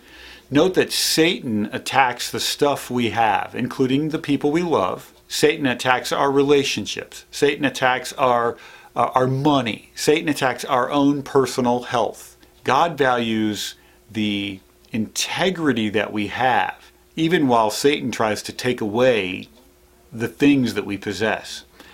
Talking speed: 130 wpm